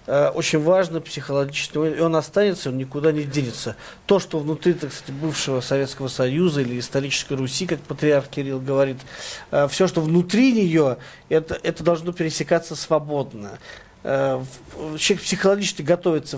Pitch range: 140-180 Hz